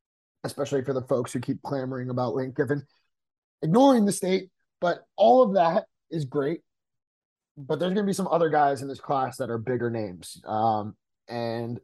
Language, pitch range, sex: English, 110-135 Hz, male